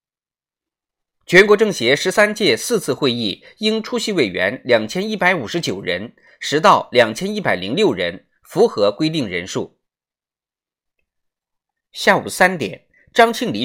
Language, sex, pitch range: Chinese, male, 155-230 Hz